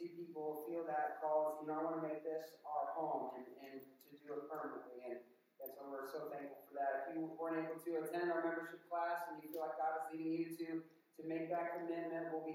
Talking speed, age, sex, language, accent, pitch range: 245 wpm, 30-49, male, English, American, 160-190 Hz